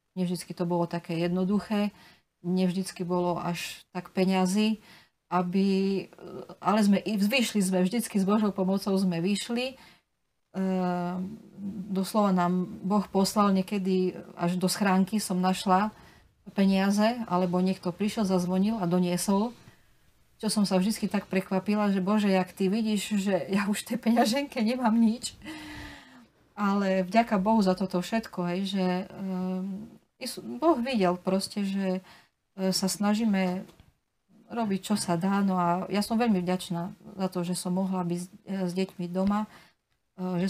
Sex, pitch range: female, 180-210 Hz